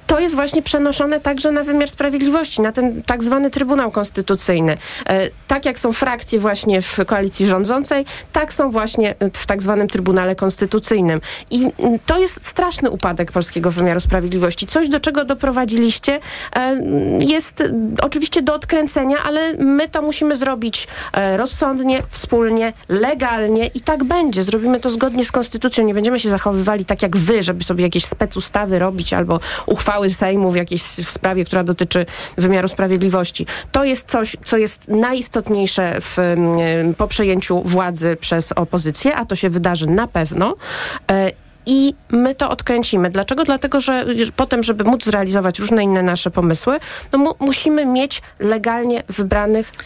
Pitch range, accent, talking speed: 190-270 Hz, native, 140 wpm